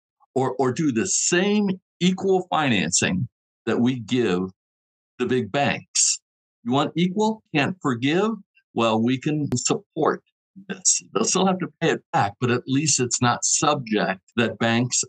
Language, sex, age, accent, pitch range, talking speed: English, male, 60-79, American, 100-160 Hz, 150 wpm